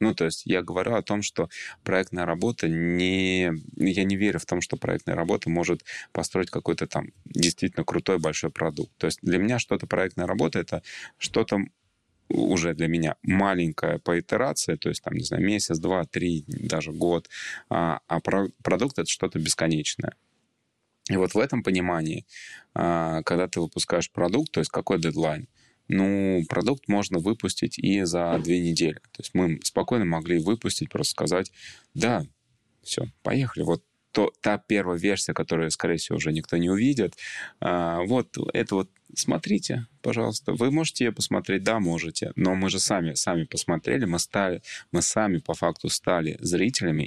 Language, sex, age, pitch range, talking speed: Russian, male, 20-39, 85-100 Hz, 160 wpm